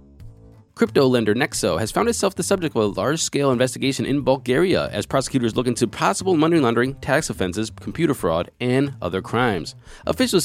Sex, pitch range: male, 105-135 Hz